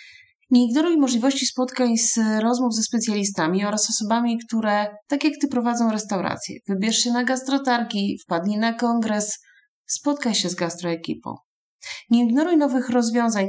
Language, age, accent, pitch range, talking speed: Polish, 30-49, native, 185-245 Hz, 140 wpm